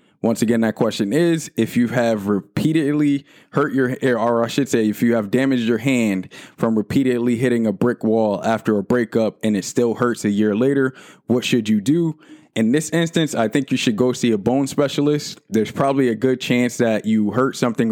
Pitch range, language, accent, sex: 110-130 Hz, English, American, male